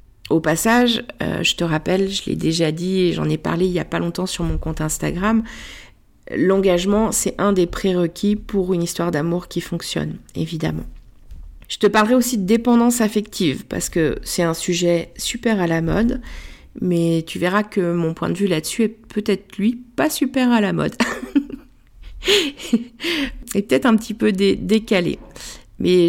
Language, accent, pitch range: French, French, 170-220 Hz